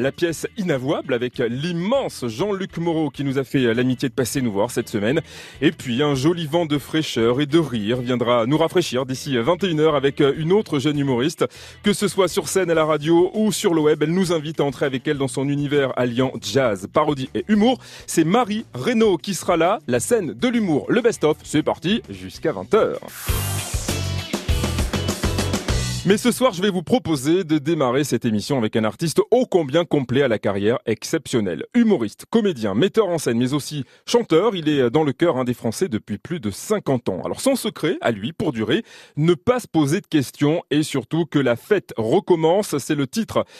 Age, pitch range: 30-49, 125-185 Hz